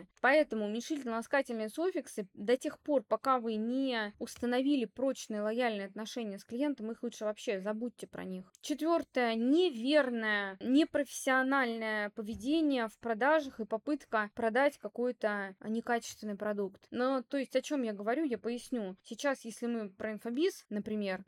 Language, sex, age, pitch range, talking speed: Russian, female, 20-39, 210-265 Hz, 135 wpm